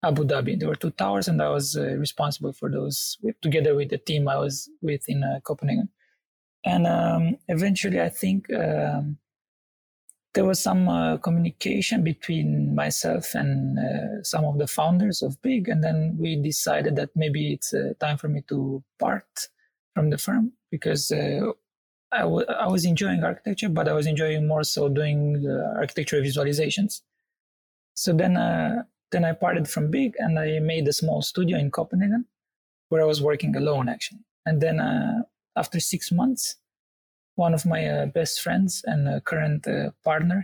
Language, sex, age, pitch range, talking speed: English, male, 30-49, 145-190 Hz, 170 wpm